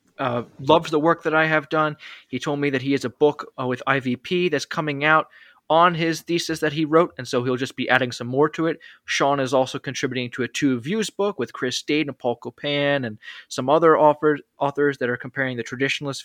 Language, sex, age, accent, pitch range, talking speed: English, male, 20-39, American, 130-170 Hz, 225 wpm